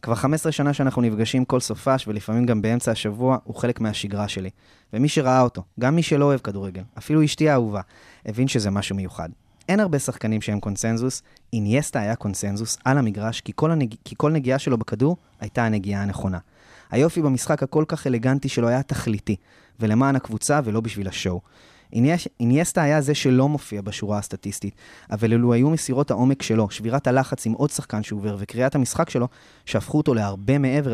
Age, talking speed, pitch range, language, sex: 20-39, 175 wpm, 105-140 Hz, Hebrew, male